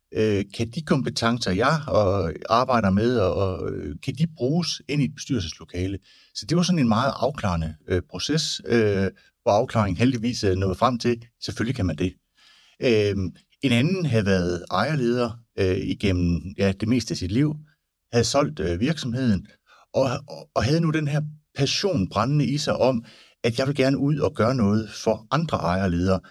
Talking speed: 175 wpm